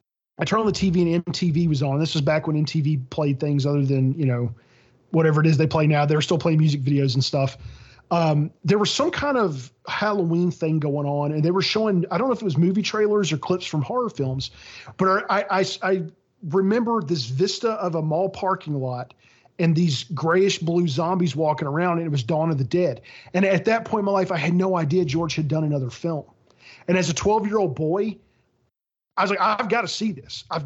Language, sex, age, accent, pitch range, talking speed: English, male, 40-59, American, 145-185 Hz, 225 wpm